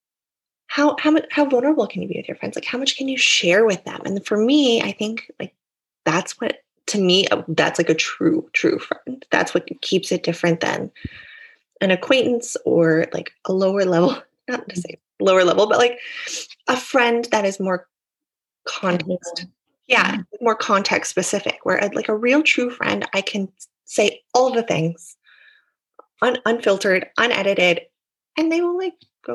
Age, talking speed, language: 20-39, 170 wpm, English